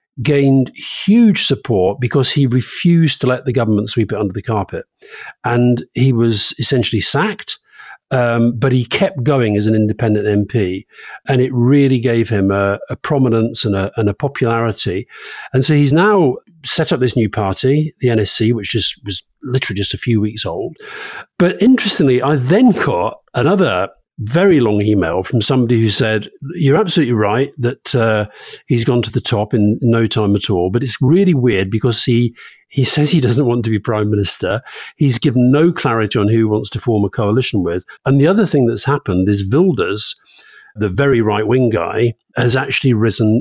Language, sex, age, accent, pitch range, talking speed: English, male, 50-69, British, 110-140 Hz, 180 wpm